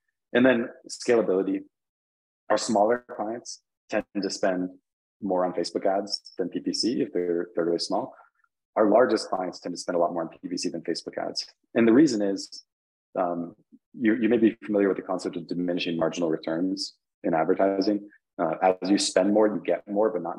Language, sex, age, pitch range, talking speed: English, male, 30-49, 85-130 Hz, 185 wpm